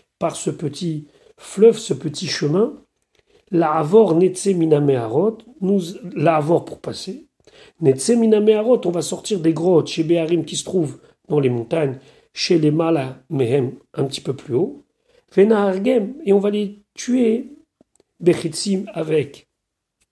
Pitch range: 170-220 Hz